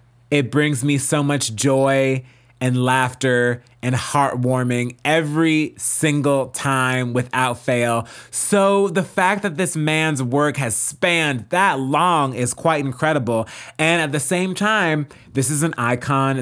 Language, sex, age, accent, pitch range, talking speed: English, male, 30-49, American, 125-160 Hz, 140 wpm